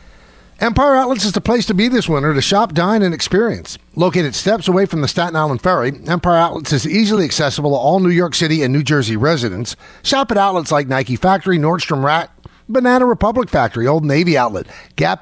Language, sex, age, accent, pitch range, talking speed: English, male, 50-69, American, 150-205 Hz, 200 wpm